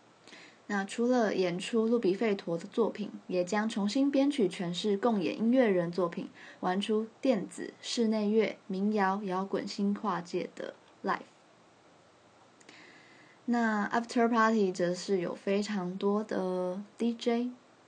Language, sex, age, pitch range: Chinese, female, 20-39, 185-220 Hz